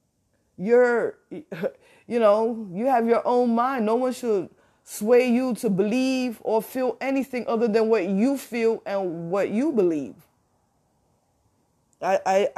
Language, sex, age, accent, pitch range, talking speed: English, female, 20-39, American, 160-210 Hz, 135 wpm